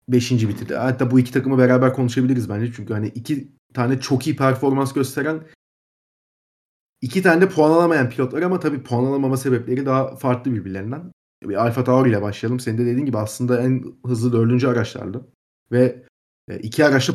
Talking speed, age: 170 wpm, 30-49